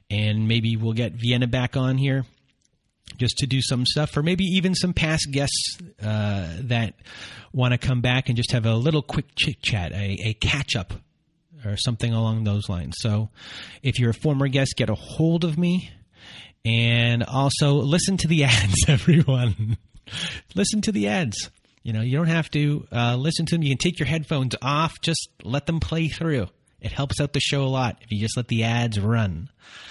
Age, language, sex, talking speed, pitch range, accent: 30-49, English, male, 200 wpm, 110-145 Hz, American